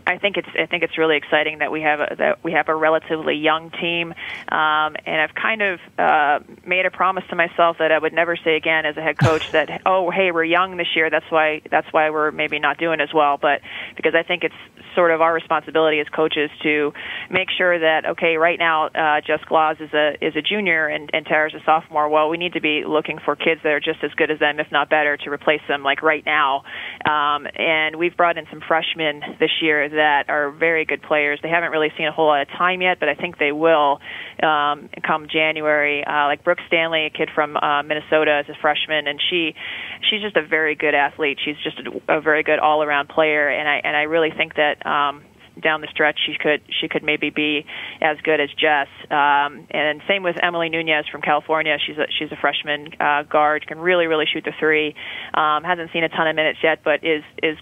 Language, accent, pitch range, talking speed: English, American, 150-165 Hz, 235 wpm